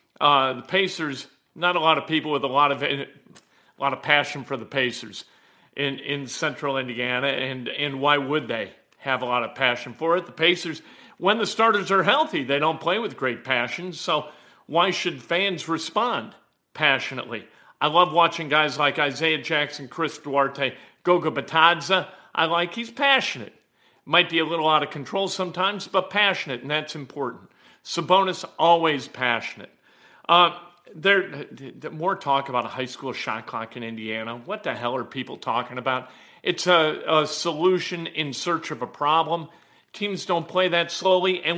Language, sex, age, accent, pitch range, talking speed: English, male, 50-69, American, 140-185 Hz, 175 wpm